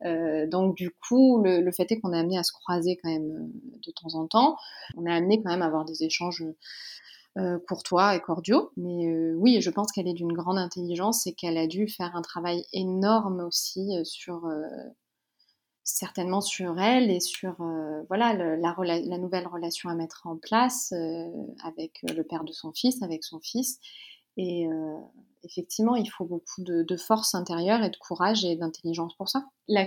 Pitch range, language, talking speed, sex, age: 170-205 Hz, French, 205 wpm, female, 30-49